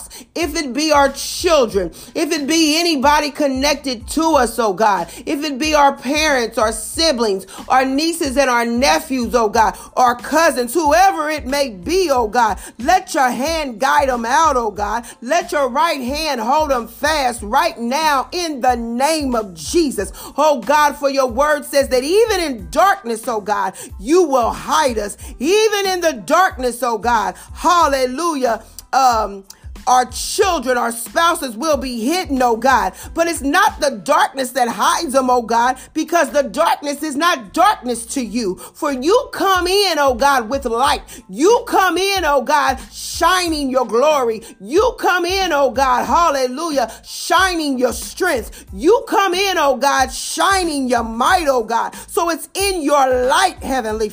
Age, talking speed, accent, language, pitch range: 40-59, 165 wpm, American, English, 250-330 Hz